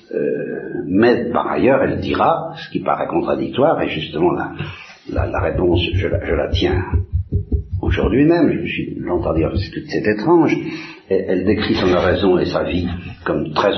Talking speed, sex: 185 wpm, male